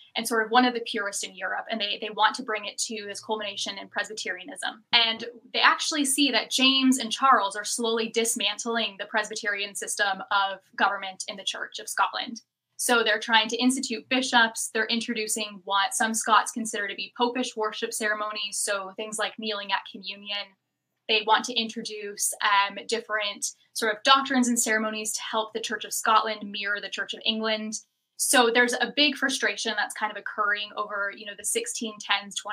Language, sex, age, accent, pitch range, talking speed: English, female, 10-29, American, 205-235 Hz, 185 wpm